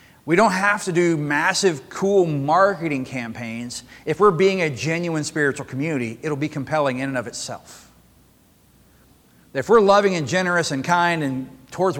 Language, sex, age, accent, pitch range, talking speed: English, male, 40-59, American, 135-175 Hz, 160 wpm